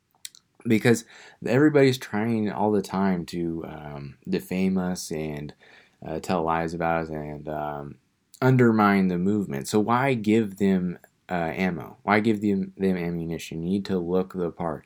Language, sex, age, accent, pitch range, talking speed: English, male, 20-39, American, 95-125 Hz, 155 wpm